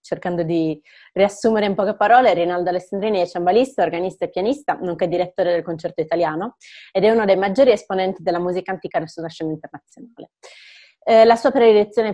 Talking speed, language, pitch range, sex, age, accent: 175 wpm, Italian, 165-195 Hz, female, 30-49, native